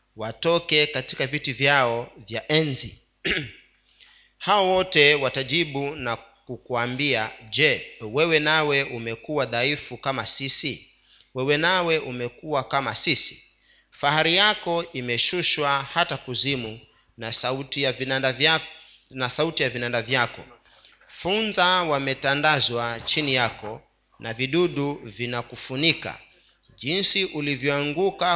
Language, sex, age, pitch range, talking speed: Swahili, male, 40-59, 120-155 Hz, 95 wpm